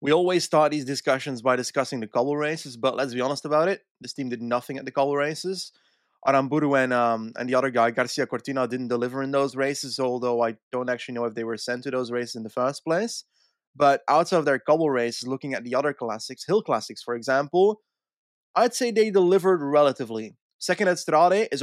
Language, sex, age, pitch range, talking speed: English, male, 20-39, 125-165 Hz, 215 wpm